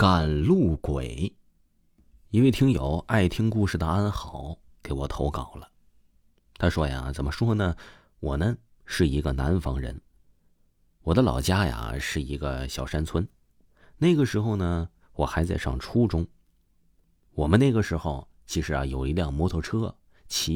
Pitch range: 75-105 Hz